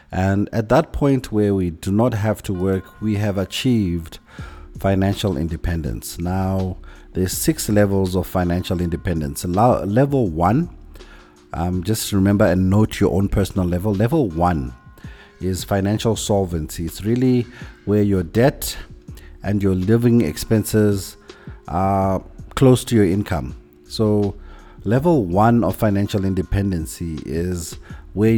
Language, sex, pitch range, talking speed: English, male, 85-110 Hz, 130 wpm